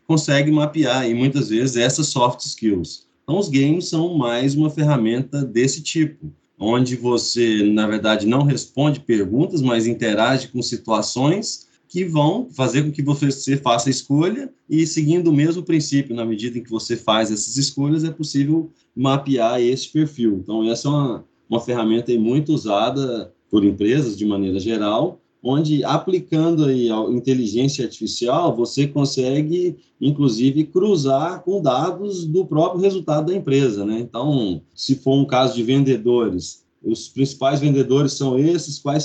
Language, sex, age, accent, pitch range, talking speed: Portuguese, male, 20-39, Brazilian, 120-150 Hz, 150 wpm